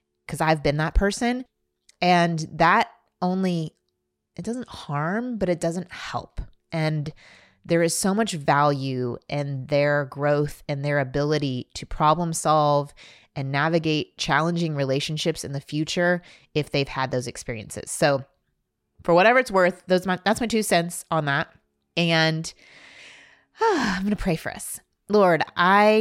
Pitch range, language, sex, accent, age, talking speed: 140-175 Hz, English, female, American, 30-49, 150 wpm